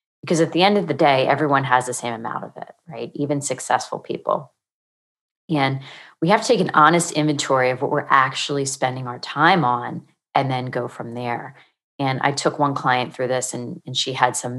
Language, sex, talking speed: English, female, 210 wpm